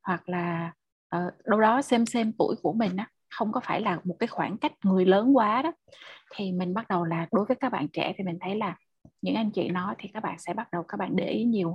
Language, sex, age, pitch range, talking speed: Vietnamese, female, 20-39, 175-225 Hz, 265 wpm